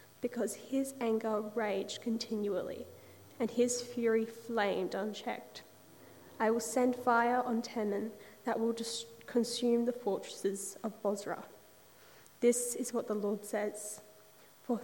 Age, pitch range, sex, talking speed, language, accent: 10-29, 215-245 Hz, female, 120 wpm, English, Australian